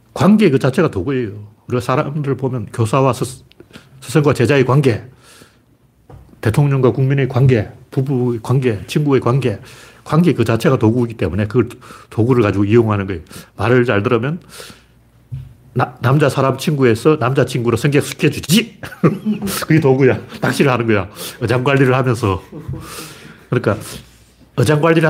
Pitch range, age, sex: 115-140 Hz, 40-59, male